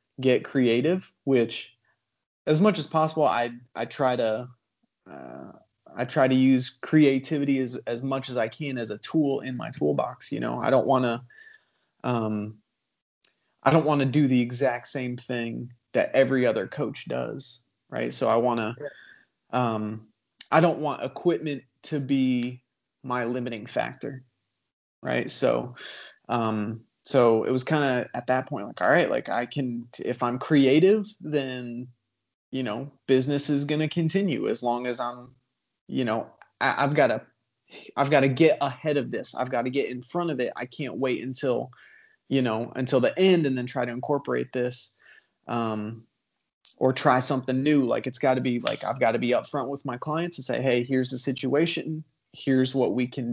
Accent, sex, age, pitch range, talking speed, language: American, male, 30-49, 120-140 Hz, 180 wpm, English